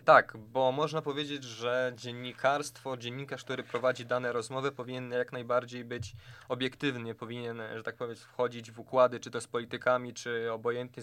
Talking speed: 160 wpm